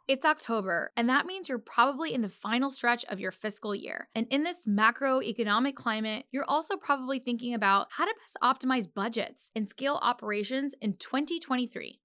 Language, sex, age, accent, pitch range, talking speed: English, female, 10-29, American, 215-275 Hz, 175 wpm